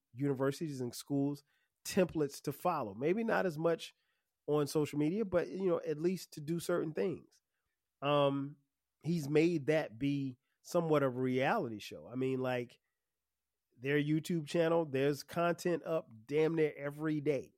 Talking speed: 150 wpm